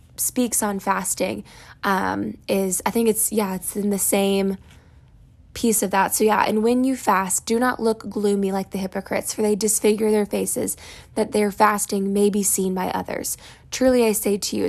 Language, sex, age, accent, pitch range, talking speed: English, female, 20-39, American, 195-225 Hz, 190 wpm